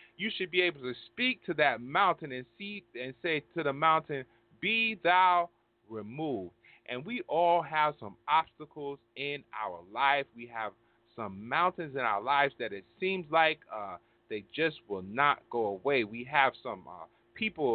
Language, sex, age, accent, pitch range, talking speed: English, male, 30-49, American, 130-185 Hz, 170 wpm